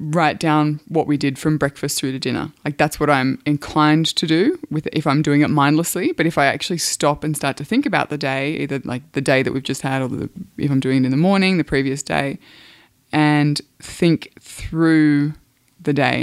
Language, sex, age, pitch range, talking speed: English, female, 20-39, 140-170 Hz, 220 wpm